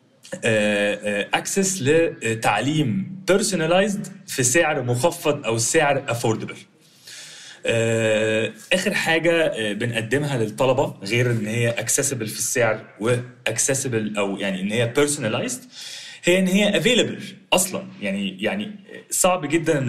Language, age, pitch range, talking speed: Arabic, 30-49, 115-165 Hz, 105 wpm